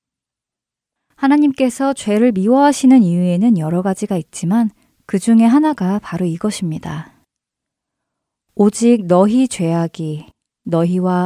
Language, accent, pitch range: Korean, native, 170-230 Hz